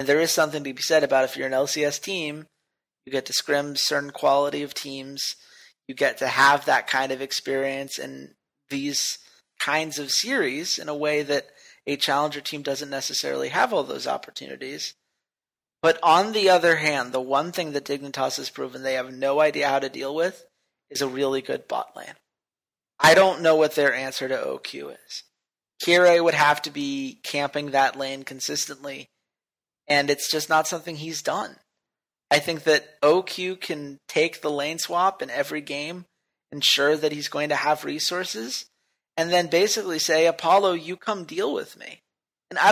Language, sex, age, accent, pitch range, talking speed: English, male, 30-49, American, 140-165 Hz, 180 wpm